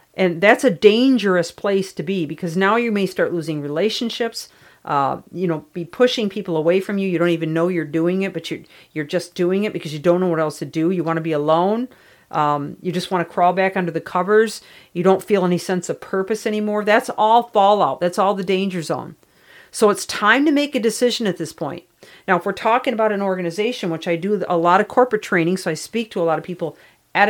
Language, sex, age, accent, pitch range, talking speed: English, female, 40-59, American, 165-210 Hz, 240 wpm